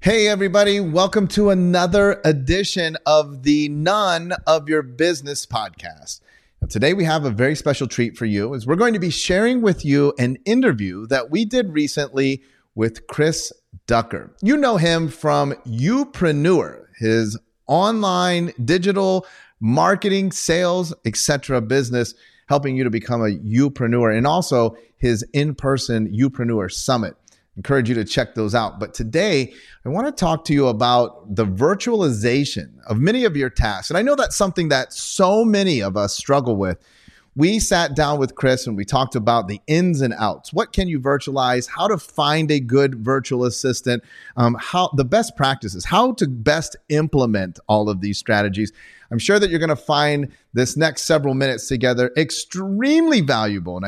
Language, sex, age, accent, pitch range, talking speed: English, male, 30-49, American, 120-175 Hz, 170 wpm